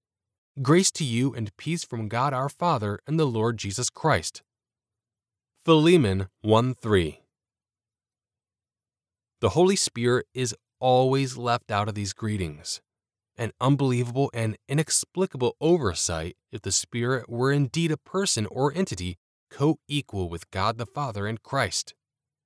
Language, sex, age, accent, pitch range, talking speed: English, male, 20-39, American, 100-140 Hz, 125 wpm